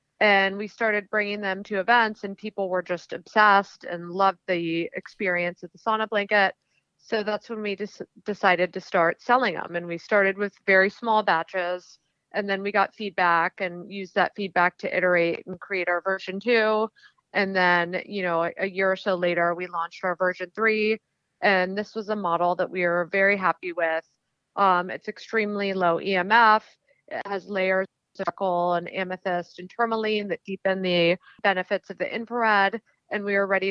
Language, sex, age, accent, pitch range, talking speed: English, female, 30-49, American, 175-205 Hz, 180 wpm